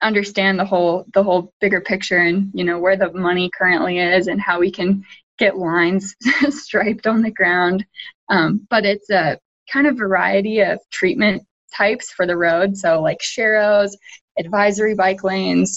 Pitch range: 180-205 Hz